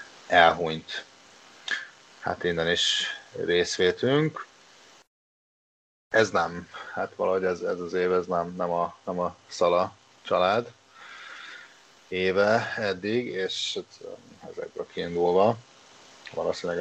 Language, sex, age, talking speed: Hungarian, male, 30-49, 95 wpm